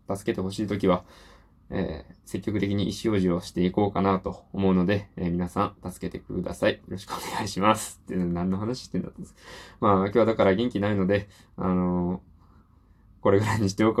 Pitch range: 95-115 Hz